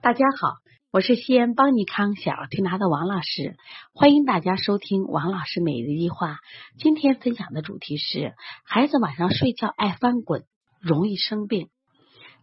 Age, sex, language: 30-49, female, Chinese